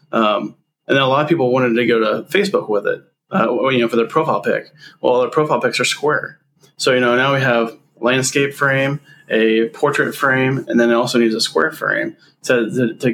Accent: American